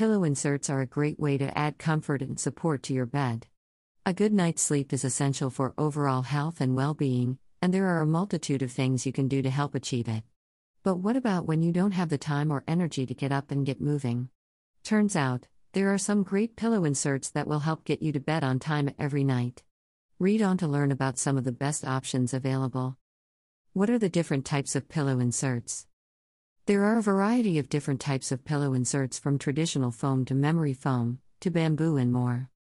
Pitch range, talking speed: 130-165 Hz, 210 wpm